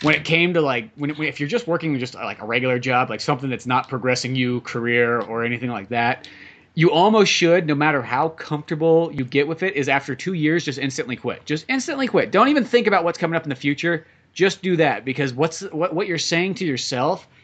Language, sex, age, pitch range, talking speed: English, male, 30-49, 125-165 Hz, 235 wpm